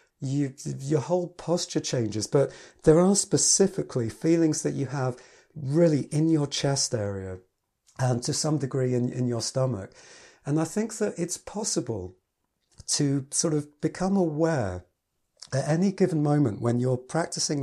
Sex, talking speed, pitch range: male, 145 wpm, 125-160 Hz